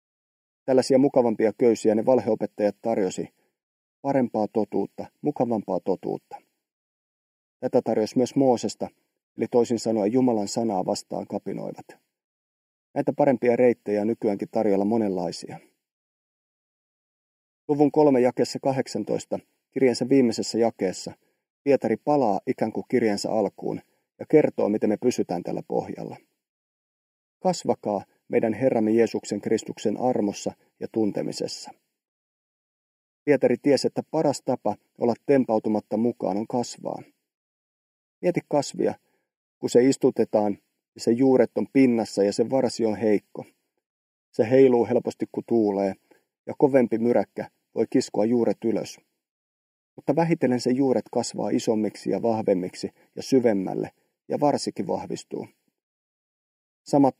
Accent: native